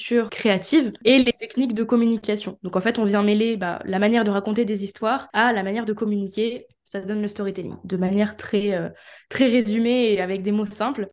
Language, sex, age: French, female, 10-29